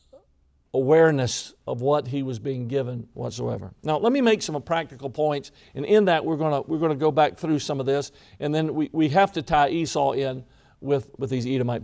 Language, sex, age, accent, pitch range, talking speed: English, male, 50-69, American, 145-190 Hz, 210 wpm